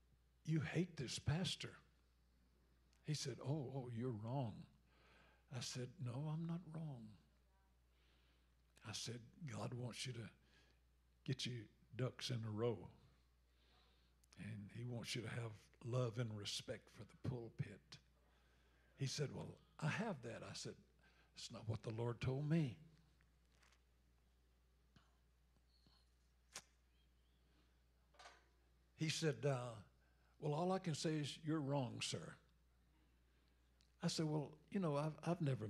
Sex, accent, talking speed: male, American, 125 wpm